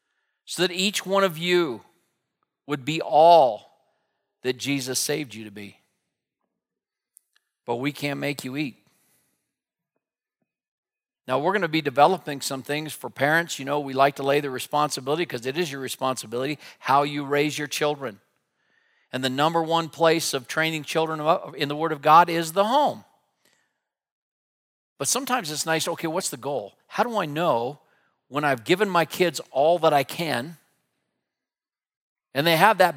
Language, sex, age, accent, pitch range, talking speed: English, male, 50-69, American, 140-165 Hz, 165 wpm